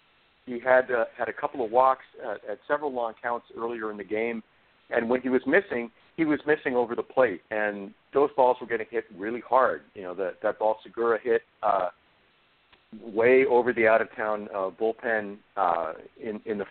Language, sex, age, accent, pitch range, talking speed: English, male, 50-69, American, 115-150 Hz, 195 wpm